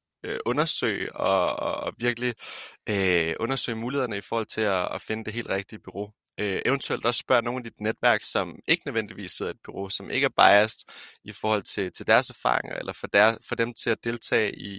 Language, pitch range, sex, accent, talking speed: Danish, 100-115 Hz, male, native, 200 wpm